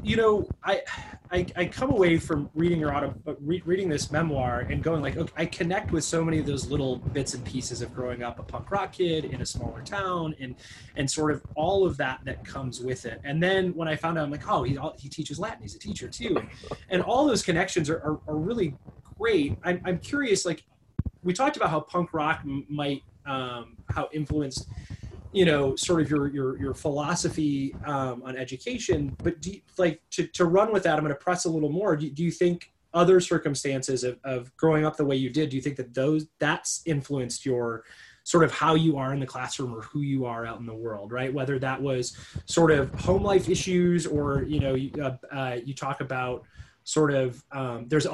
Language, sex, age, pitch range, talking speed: English, male, 20-39, 130-165 Hz, 225 wpm